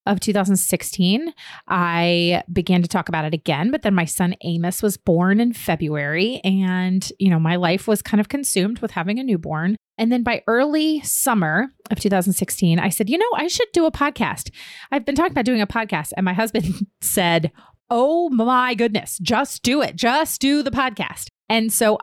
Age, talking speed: 30-49, 190 wpm